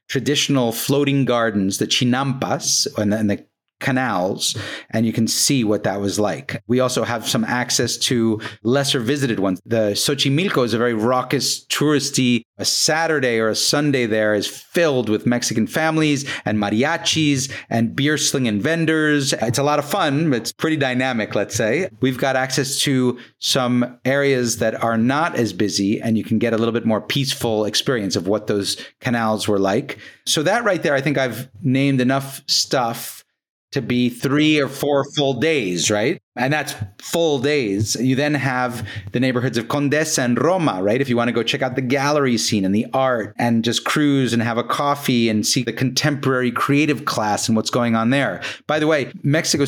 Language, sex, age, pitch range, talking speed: English, male, 40-59, 115-140 Hz, 185 wpm